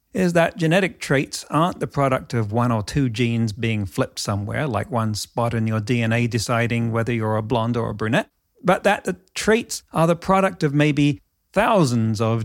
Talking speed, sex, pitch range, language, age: 195 wpm, male, 115-165 Hz, English, 40-59